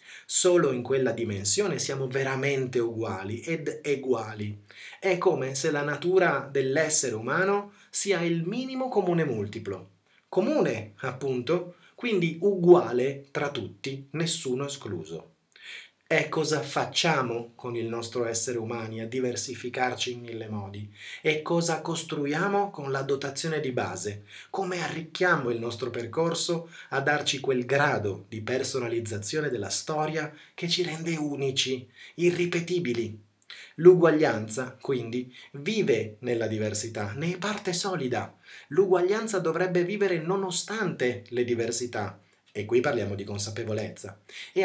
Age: 30-49